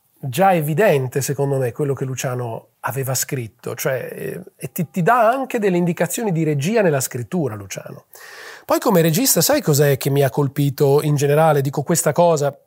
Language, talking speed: Italian, 170 wpm